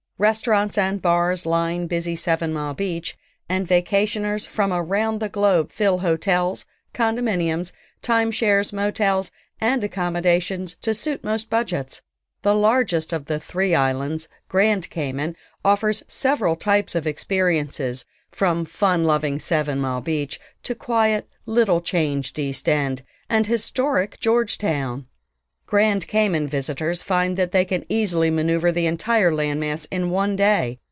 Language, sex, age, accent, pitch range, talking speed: English, female, 50-69, American, 155-205 Hz, 130 wpm